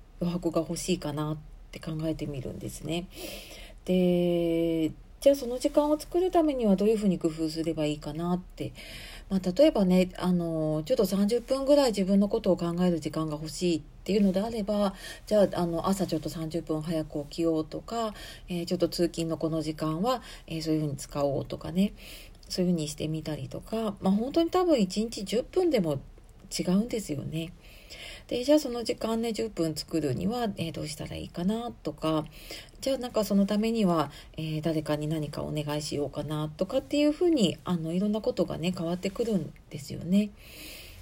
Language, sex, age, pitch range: Japanese, female, 40-59, 155-225 Hz